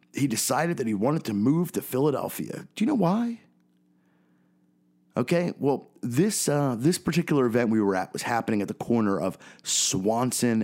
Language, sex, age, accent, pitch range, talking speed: English, male, 30-49, American, 95-130 Hz, 170 wpm